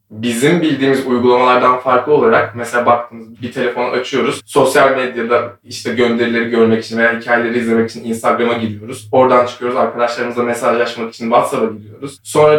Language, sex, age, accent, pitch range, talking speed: Turkish, male, 20-39, native, 120-145 Hz, 145 wpm